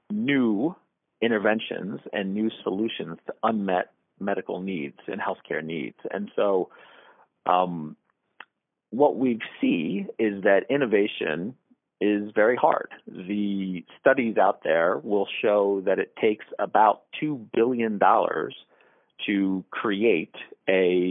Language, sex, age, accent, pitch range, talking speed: English, male, 40-59, American, 90-110 Hz, 110 wpm